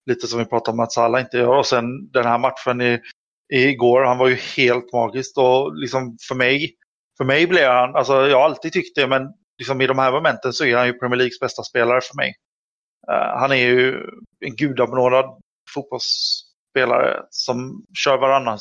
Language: Swedish